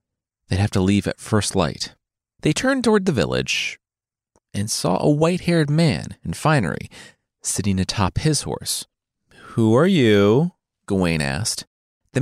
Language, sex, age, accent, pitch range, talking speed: English, male, 30-49, American, 100-150 Hz, 140 wpm